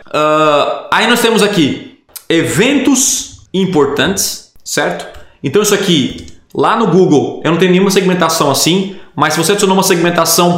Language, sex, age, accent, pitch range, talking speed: Portuguese, male, 20-39, Brazilian, 150-200 Hz, 145 wpm